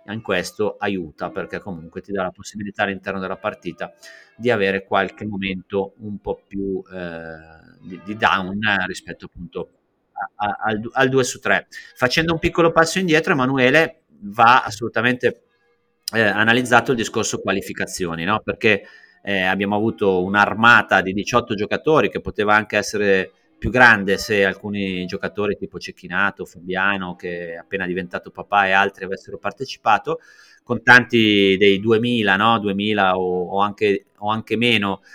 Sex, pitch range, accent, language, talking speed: male, 95-120 Hz, native, Italian, 145 wpm